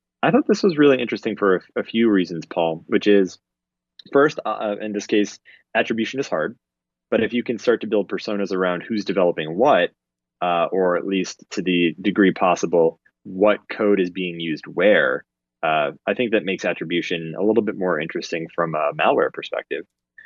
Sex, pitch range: male, 85-115 Hz